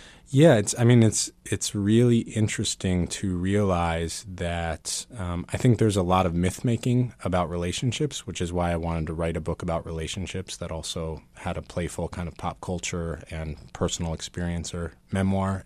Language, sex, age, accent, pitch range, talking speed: English, male, 30-49, American, 80-95 Hz, 175 wpm